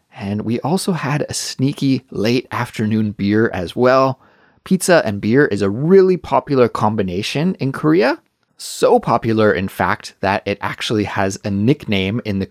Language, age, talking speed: English, 30-49, 160 wpm